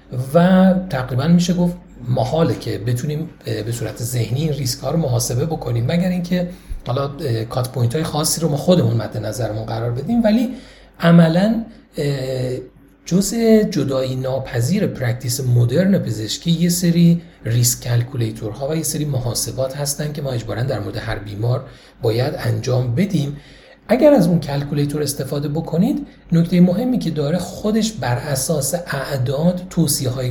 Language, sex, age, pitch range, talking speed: Persian, male, 40-59, 120-170 Hz, 145 wpm